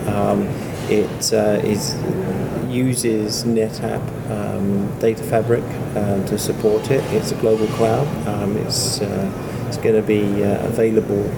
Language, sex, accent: English, male, British